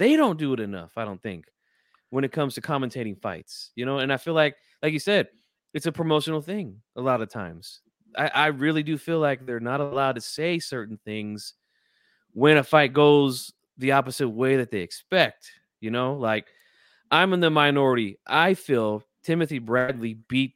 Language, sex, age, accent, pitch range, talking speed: English, male, 20-39, American, 115-155 Hz, 195 wpm